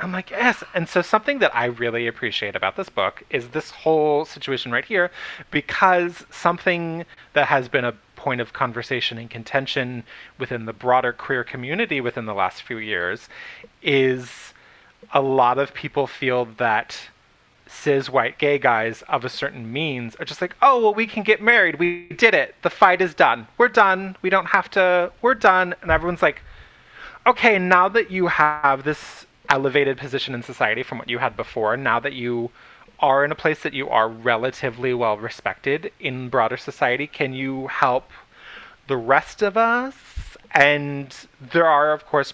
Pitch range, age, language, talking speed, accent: 125-170 Hz, 30-49, English, 175 wpm, American